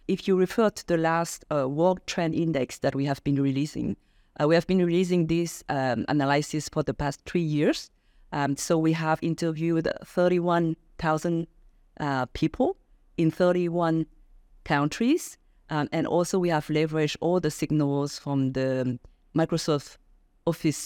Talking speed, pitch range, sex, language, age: 145 wpm, 140-175 Hz, female, Vietnamese, 50-69